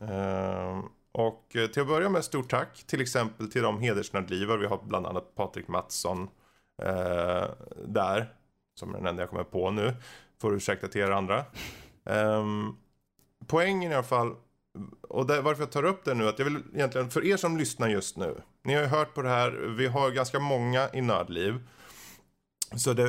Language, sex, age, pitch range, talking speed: Swedish, male, 20-39, 100-135 Hz, 190 wpm